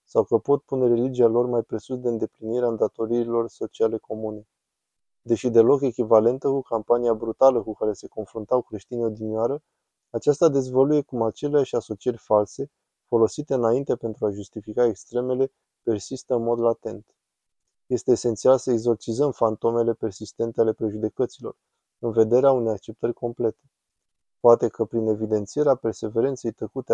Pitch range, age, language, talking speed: 110-125 Hz, 20-39, Romanian, 135 wpm